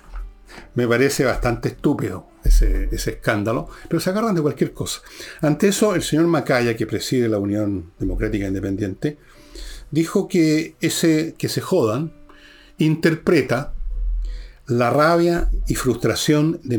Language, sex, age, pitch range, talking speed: Spanish, male, 60-79, 105-150 Hz, 130 wpm